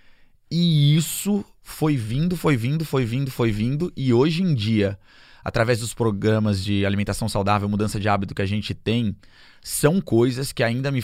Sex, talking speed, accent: male, 175 wpm, Brazilian